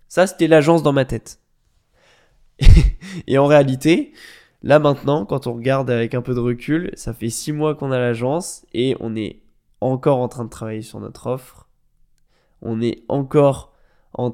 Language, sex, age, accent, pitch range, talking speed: French, male, 20-39, French, 120-140 Hz, 170 wpm